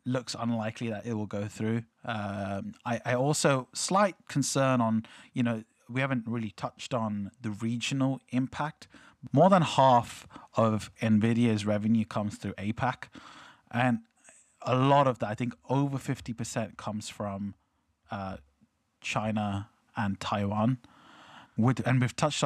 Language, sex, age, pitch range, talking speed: English, male, 20-39, 105-125 Hz, 140 wpm